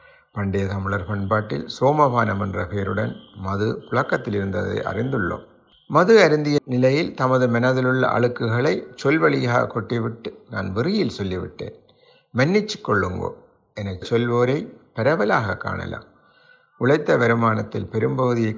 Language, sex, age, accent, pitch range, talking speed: Tamil, male, 50-69, native, 100-130 Hz, 100 wpm